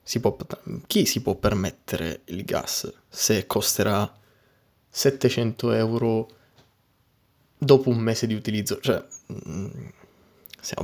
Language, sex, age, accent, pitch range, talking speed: Italian, male, 20-39, native, 105-130 Hz, 95 wpm